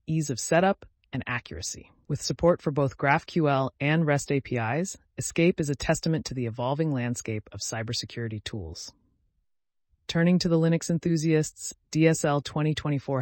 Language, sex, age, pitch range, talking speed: English, female, 30-49, 120-160 Hz, 140 wpm